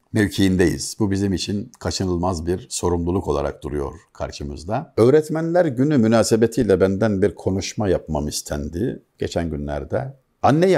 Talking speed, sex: 115 wpm, male